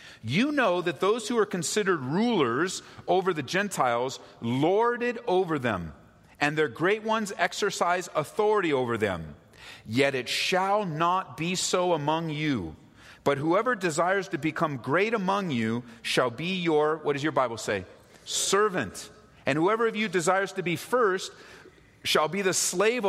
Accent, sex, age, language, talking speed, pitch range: American, male, 40-59, English, 155 wpm, 140-200 Hz